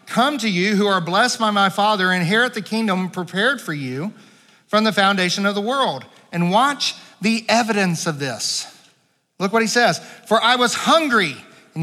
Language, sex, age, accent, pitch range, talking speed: English, male, 40-59, American, 140-210 Hz, 185 wpm